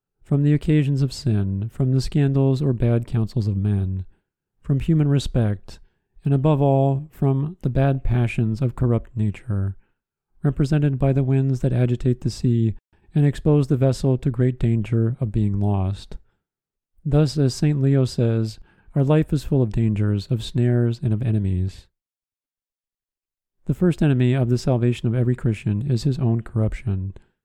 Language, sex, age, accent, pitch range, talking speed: English, male, 40-59, American, 110-140 Hz, 160 wpm